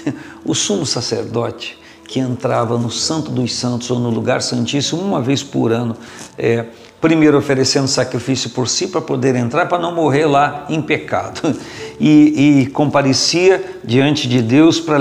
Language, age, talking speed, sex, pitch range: Portuguese, 50-69, 150 wpm, male, 125-160 Hz